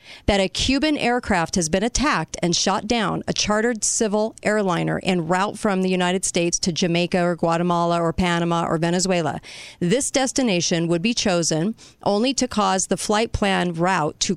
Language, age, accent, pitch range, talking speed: English, 40-59, American, 180-230 Hz, 170 wpm